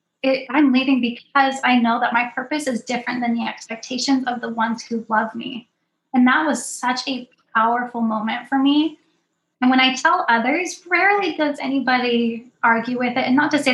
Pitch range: 235-275 Hz